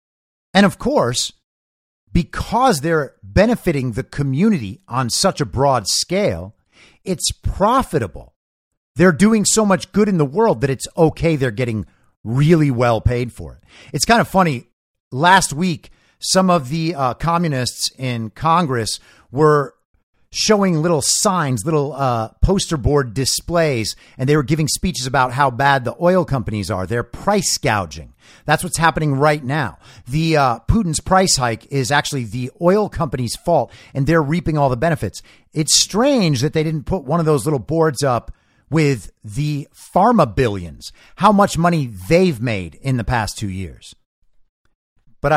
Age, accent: 50-69, American